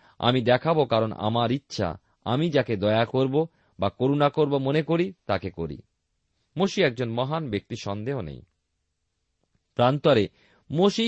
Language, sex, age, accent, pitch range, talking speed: Bengali, male, 40-59, native, 90-135 Hz, 130 wpm